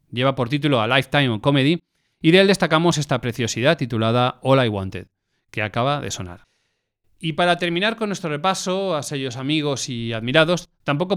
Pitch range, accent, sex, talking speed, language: 120-160 Hz, Spanish, male, 170 wpm, Spanish